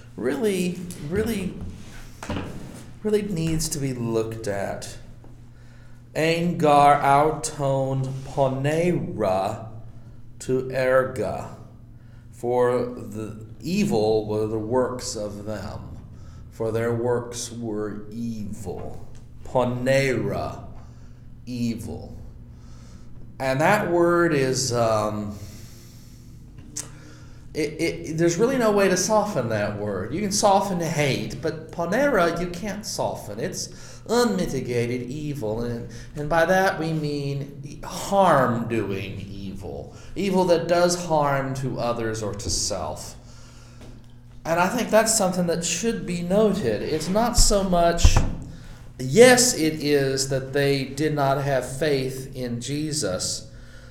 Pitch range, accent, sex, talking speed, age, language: 115-160 Hz, American, male, 105 wpm, 40-59, English